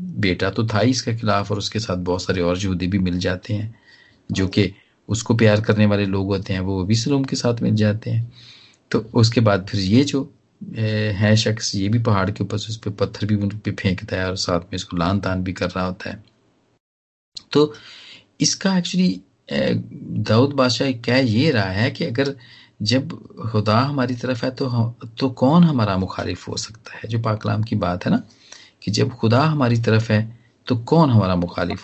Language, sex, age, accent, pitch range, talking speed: Hindi, male, 40-59, native, 95-120 Hz, 200 wpm